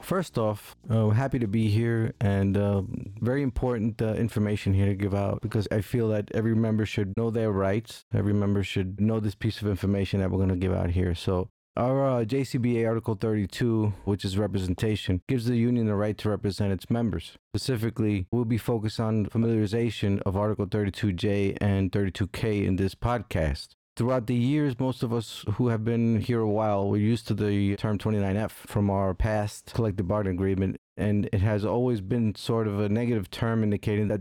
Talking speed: 195 wpm